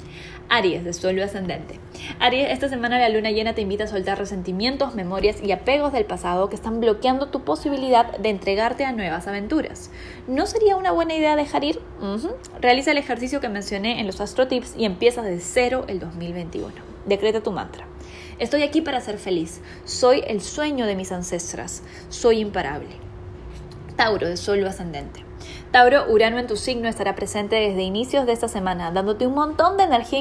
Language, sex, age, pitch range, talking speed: Spanish, female, 10-29, 195-250 Hz, 175 wpm